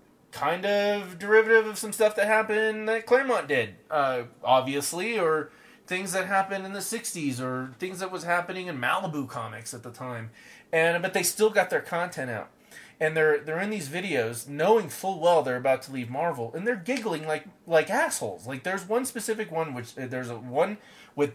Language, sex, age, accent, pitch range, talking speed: English, male, 30-49, American, 130-210 Hz, 195 wpm